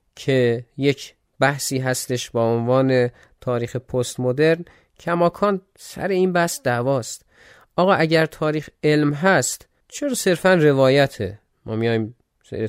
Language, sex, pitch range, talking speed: Persian, male, 125-170 Hz, 115 wpm